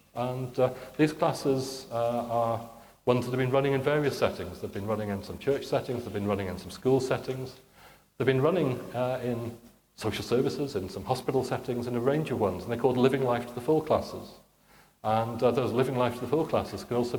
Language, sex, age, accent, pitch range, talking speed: English, male, 40-59, British, 115-130 Hz, 225 wpm